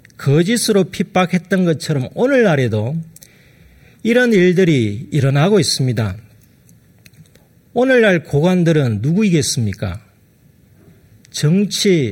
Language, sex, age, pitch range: Korean, male, 40-59, 120-185 Hz